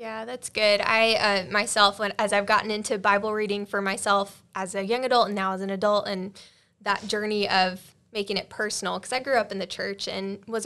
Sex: female